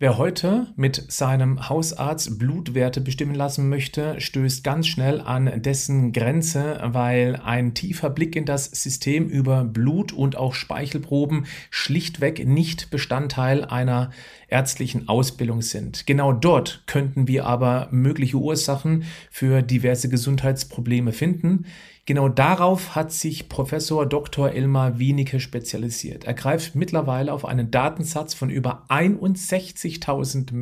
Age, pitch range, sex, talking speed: 40-59, 130-155 Hz, male, 125 wpm